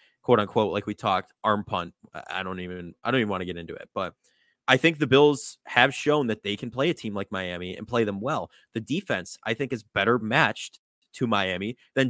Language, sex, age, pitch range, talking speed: English, male, 20-39, 100-135 Hz, 235 wpm